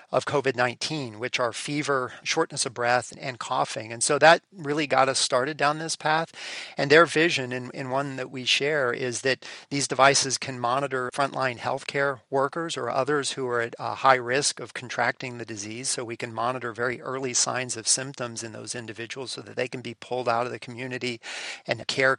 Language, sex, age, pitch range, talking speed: English, male, 40-59, 120-140 Hz, 200 wpm